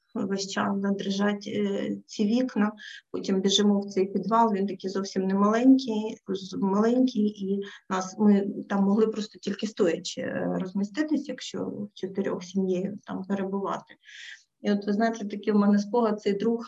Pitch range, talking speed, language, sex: 195-225 Hz, 145 wpm, Ukrainian, female